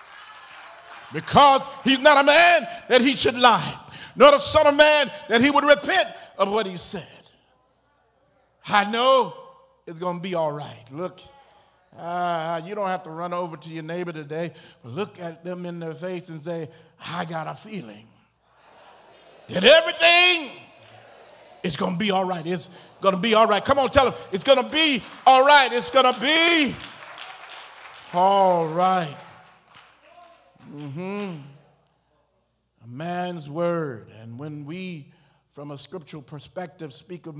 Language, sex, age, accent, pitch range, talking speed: English, male, 50-69, American, 155-220 Hz, 155 wpm